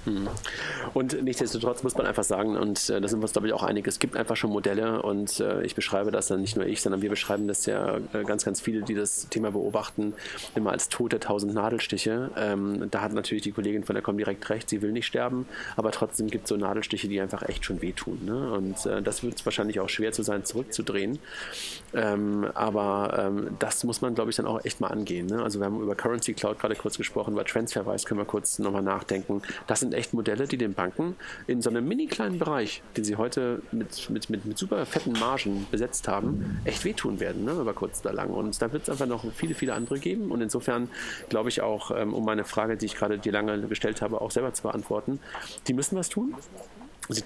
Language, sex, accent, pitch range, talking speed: German, male, German, 105-120 Hz, 220 wpm